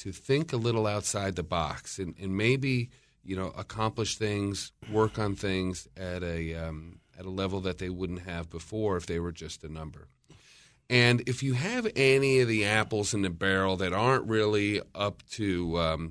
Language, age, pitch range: English, 40-59, 85-110 Hz